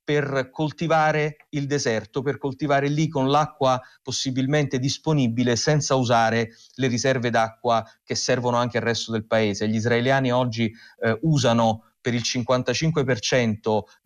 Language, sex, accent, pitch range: Italian, male, native, 115-145 Hz